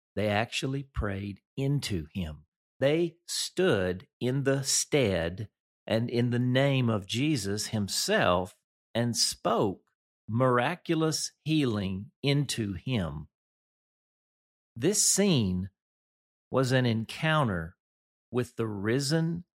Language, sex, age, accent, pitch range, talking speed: English, male, 50-69, American, 90-130 Hz, 95 wpm